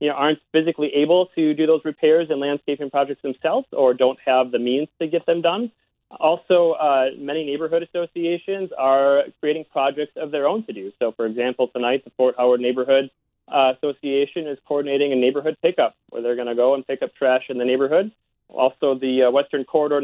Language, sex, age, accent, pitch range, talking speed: English, male, 30-49, American, 125-155 Hz, 200 wpm